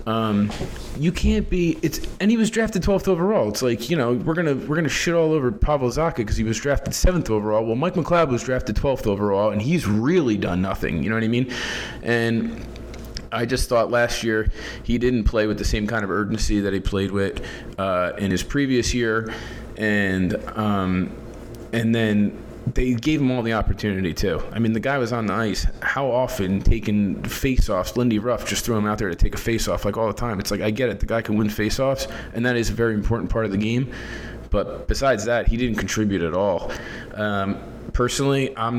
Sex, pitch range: male, 105-120 Hz